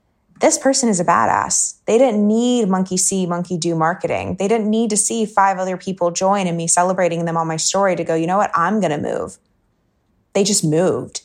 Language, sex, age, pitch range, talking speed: English, female, 20-39, 180-220 Hz, 220 wpm